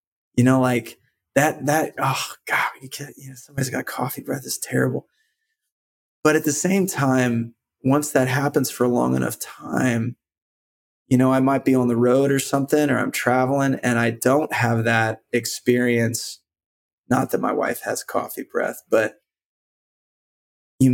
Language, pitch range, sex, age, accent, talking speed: English, 115-135 Hz, male, 20-39, American, 165 wpm